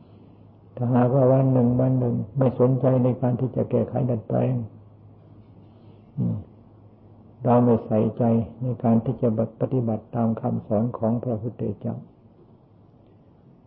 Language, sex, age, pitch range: Thai, male, 60-79, 110-125 Hz